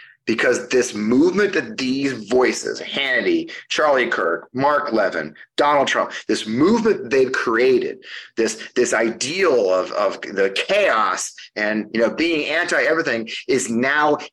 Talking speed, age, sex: 120 wpm, 30-49, male